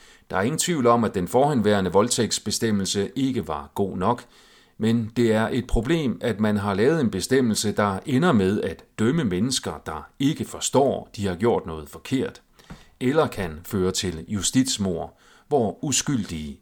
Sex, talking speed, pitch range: male, 160 wpm, 90-120 Hz